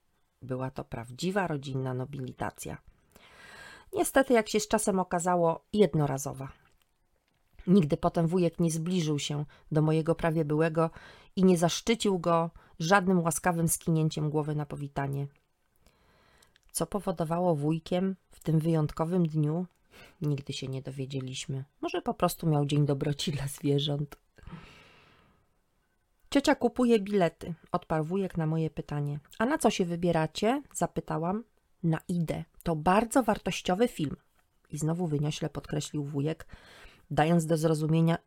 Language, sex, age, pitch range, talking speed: Polish, female, 30-49, 145-180 Hz, 125 wpm